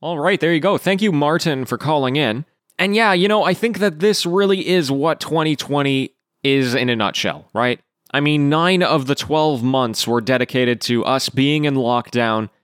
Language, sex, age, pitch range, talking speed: English, male, 20-39, 125-175 Hz, 200 wpm